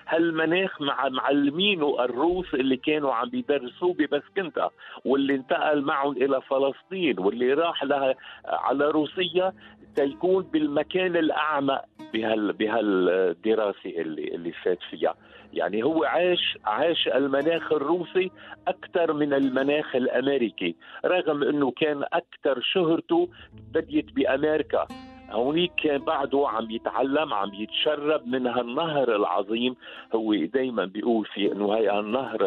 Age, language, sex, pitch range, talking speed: 50-69, English, male, 125-175 Hz, 110 wpm